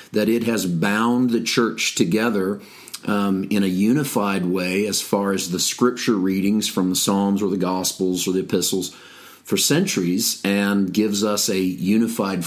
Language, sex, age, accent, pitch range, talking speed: English, male, 40-59, American, 95-110 Hz, 165 wpm